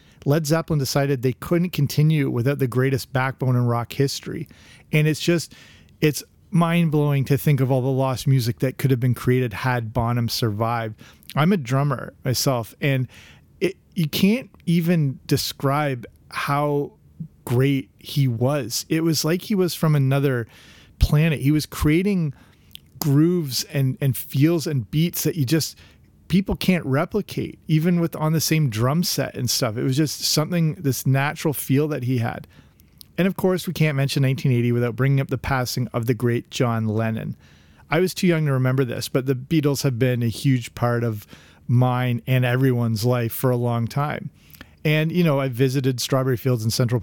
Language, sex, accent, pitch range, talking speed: English, male, American, 120-150 Hz, 175 wpm